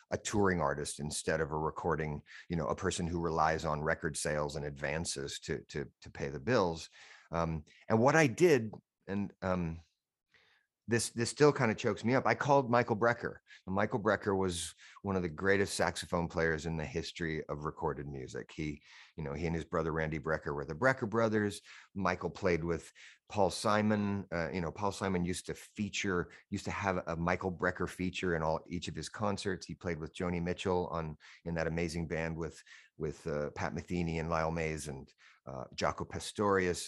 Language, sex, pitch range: English, male, 80-100 Hz